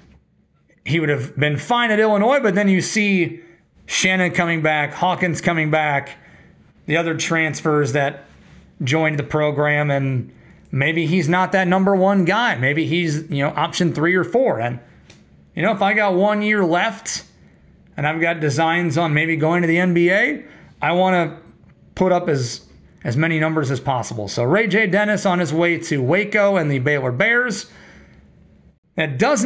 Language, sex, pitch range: English, male, 150-195 Hz